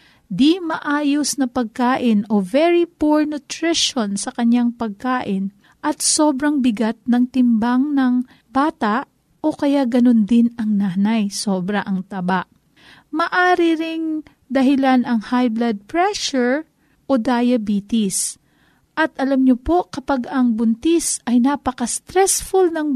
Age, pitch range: 40-59, 230-275 Hz